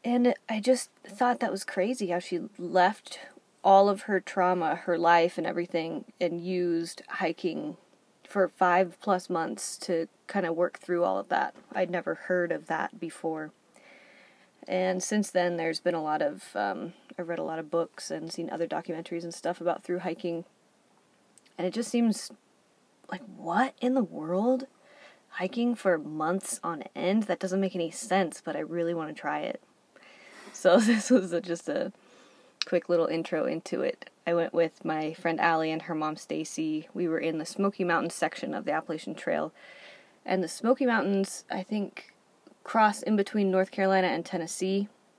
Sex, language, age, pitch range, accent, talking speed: female, English, 20-39, 170-200 Hz, American, 175 wpm